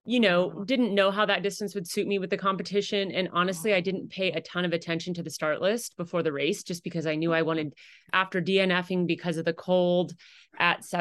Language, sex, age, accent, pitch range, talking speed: English, female, 30-49, American, 165-195 Hz, 230 wpm